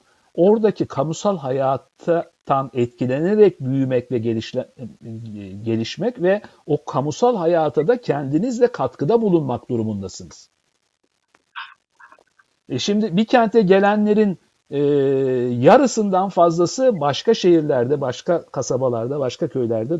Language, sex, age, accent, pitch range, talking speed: Turkish, male, 60-79, native, 125-170 Hz, 95 wpm